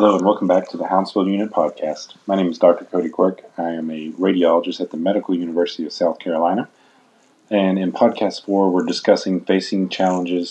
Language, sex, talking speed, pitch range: English, male, 195 wpm, 85-95 Hz